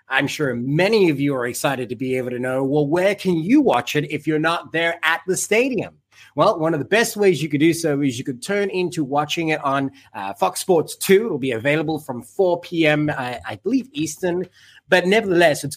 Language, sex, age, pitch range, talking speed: English, male, 30-49, 135-170 Hz, 230 wpm